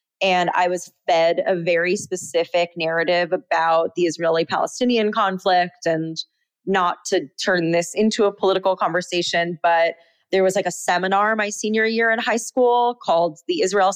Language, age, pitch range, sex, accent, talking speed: English, 20-39, 170-210 Hz, female, American, 155 wpm